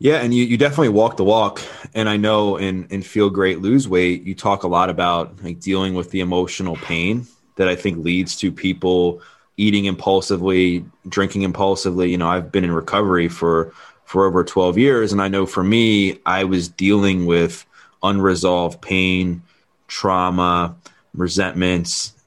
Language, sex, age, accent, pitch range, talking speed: English, male, 20-39, American, 90-105 Hz, 165 wpm